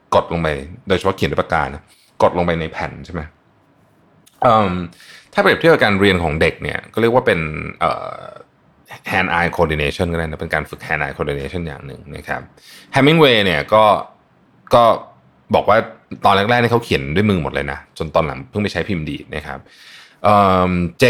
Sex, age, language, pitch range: male, 20-39, Thai, 80-110 Hz